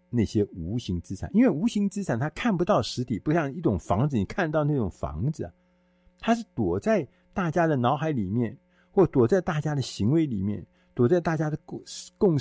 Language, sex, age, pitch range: Chinese, male, 50-69, 100-165 Hz